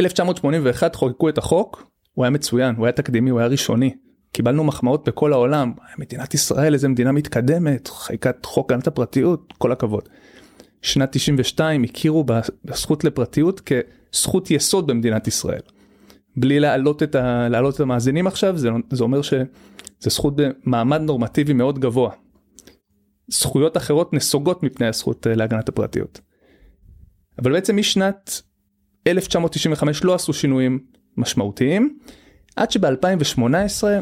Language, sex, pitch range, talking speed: Hebrew, male, 120-160 Hz, 125 wpm